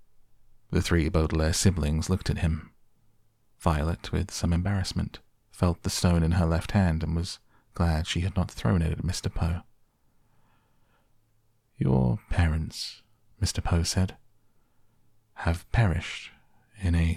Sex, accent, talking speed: male, British, 135 wpm